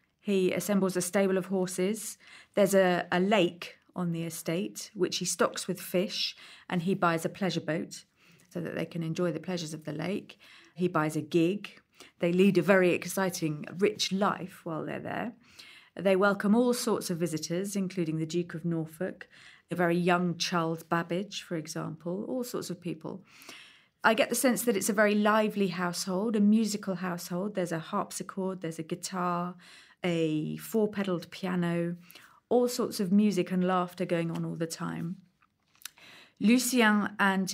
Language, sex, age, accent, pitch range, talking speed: English, female, 40-59, British, 170-195 Hz, 170 wpm